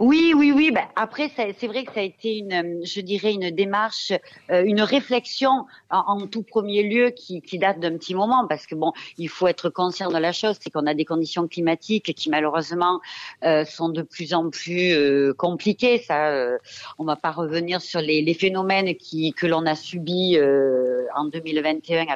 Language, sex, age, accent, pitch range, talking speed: French, female, 40-59, French, 165-220 Hz, 185 wpm